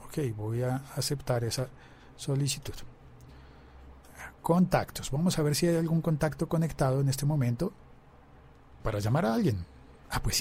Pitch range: 125-200 Hz